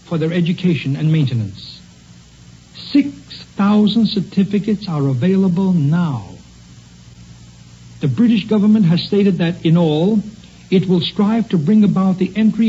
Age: 60-79